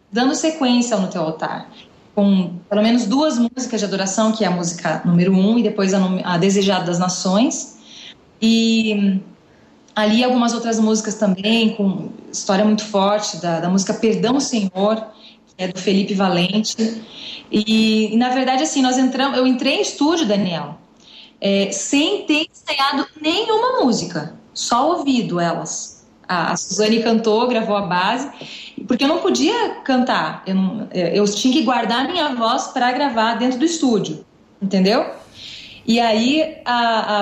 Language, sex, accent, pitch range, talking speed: Portuguese, female, Brazilian, 200-265 Hz, 155 wpm